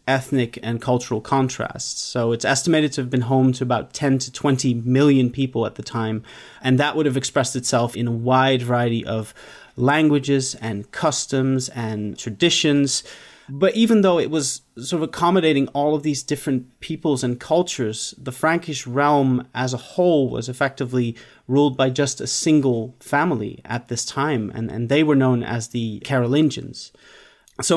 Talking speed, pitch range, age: 170 wpm, 120-140 Hz, 30-49